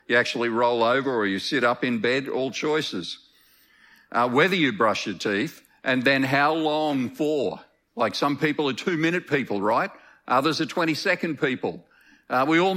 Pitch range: 125-160 Hz